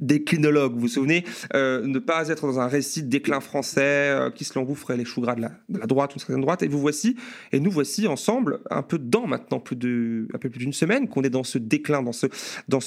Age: 30-49